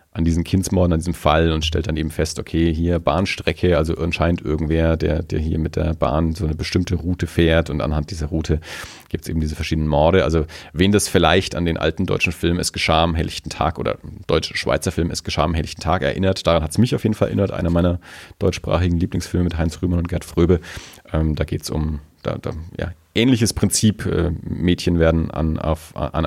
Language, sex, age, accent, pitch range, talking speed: German, male, 40-59, German, 80-115 Hz, 220 wpm